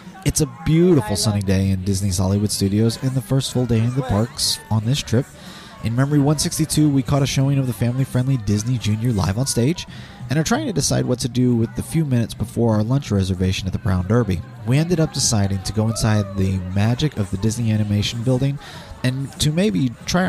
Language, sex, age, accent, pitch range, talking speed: English, male, 30-49, American, 100-130 Hz, 220 wpm